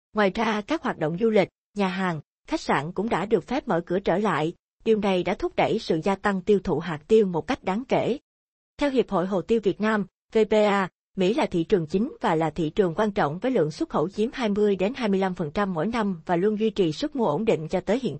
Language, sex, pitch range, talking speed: Vietnamese, female, 180-225 Hz, 245 wpm